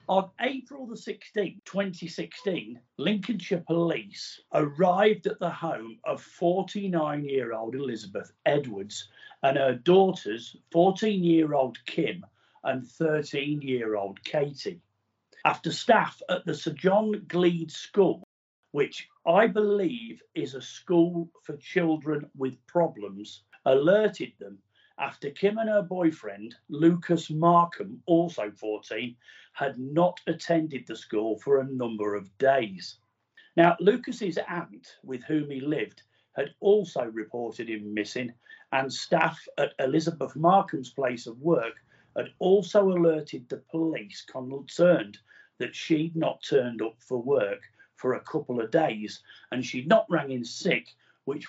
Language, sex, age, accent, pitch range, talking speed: English, male, 50-69, British, 125-180 Hz, 125 wpm